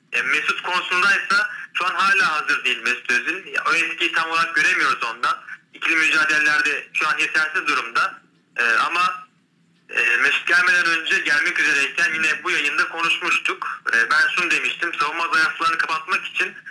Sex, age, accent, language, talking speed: male, 40-59, native, Turkish, 135 wpm